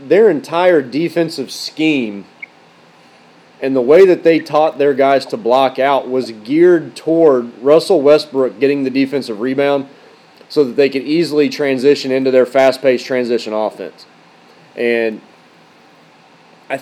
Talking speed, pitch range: 130 wpm, 125-150 Hz